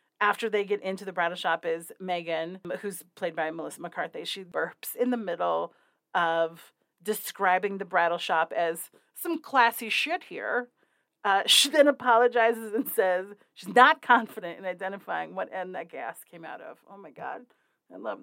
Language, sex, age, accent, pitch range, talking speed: English, female, 40-59, American, 180-245 Hz, 170 wpm